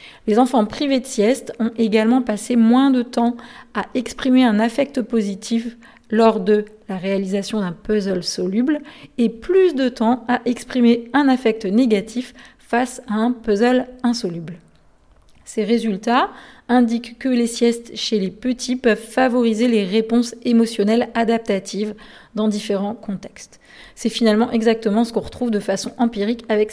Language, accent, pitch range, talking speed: French, French, 215-255 Hz, 145 wpm